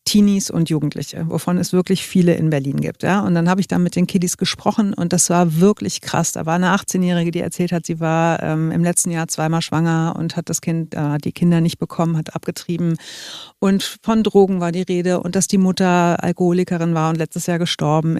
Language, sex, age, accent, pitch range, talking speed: German, female, 50-69, German, 170-195 Hz, 220 wpm